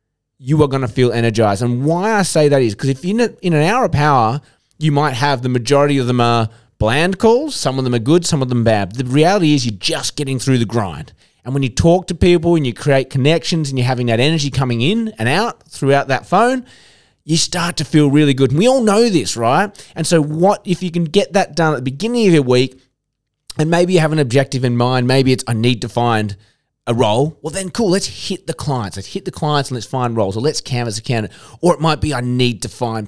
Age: 30-49